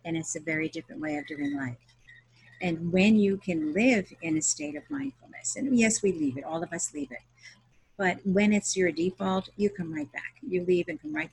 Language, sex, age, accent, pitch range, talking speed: English, female, 50-69, American, 145-185 Hz, 230 wpm